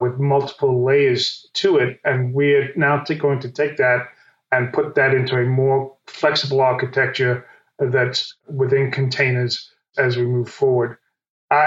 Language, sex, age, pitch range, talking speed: English, male, 30-49, 130-150 Hz, 145 wpm